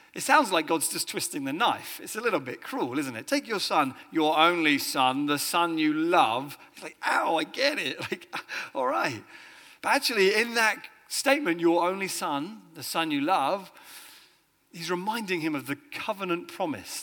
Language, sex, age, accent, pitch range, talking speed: English, male, 40-59, British, 145-215 Hz, 185 wpm